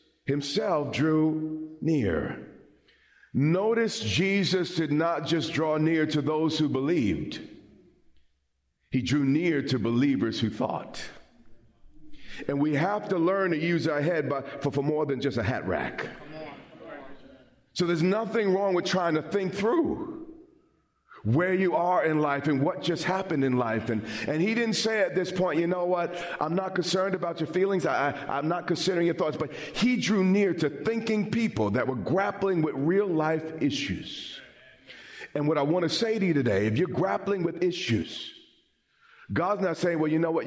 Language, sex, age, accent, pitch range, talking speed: English, male, 40-59, American, 140-185 Hz, 175 wpm